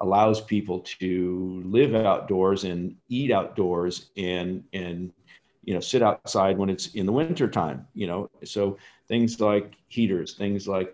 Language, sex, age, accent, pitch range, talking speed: English, male, 50-69, American, 95-115 Hz, 155 wpm